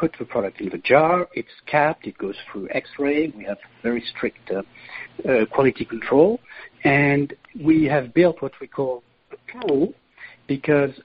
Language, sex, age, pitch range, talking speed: English, male, 60-79, 110-155 Hz, 165 wpm